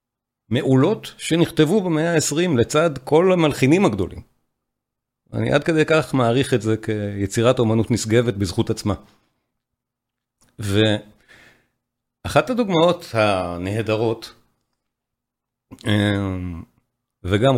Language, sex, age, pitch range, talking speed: Hebrew, male, 40-59, 105-130 Hz, 80 wpm